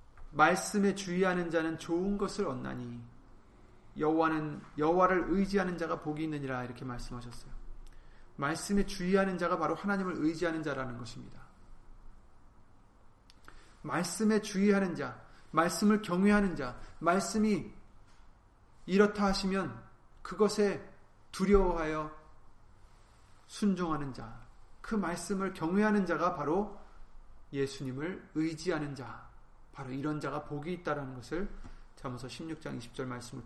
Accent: native